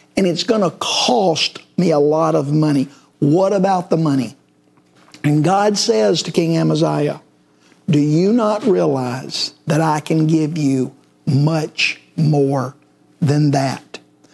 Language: English